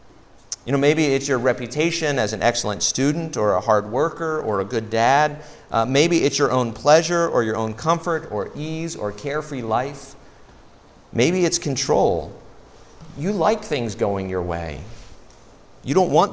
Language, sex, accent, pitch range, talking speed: English, male, American, 105-135 Hz, 165 wpm